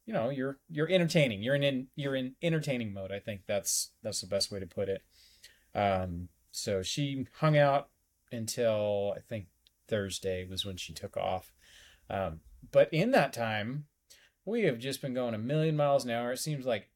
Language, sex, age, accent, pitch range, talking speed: English, male, 30-49, American, 100-140 Hz, 190 wpm